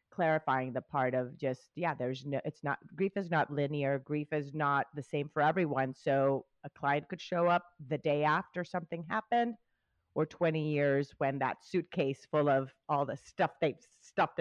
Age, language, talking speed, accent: 30-49, English, 185 wpm, American